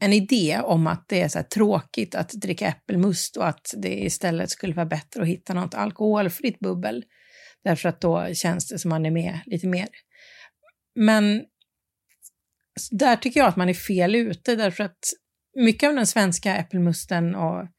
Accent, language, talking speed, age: native, Swedish, 180 wpm, 40-59